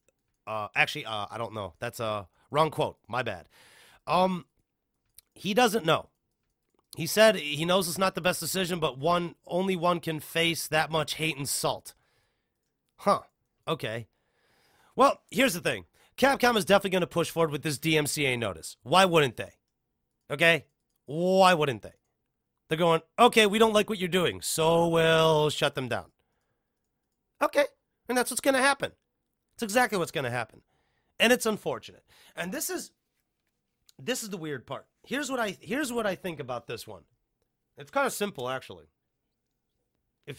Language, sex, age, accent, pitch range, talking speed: English, male, 30-49, American, 130-195 Hz, 175 wpm